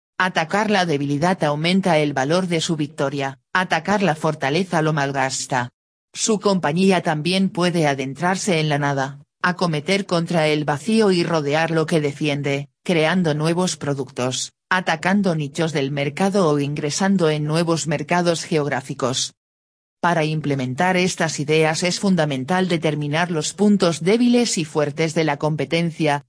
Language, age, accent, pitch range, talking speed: Spanish, 40-59, Spanish, 140-180 Hz, 135 wpm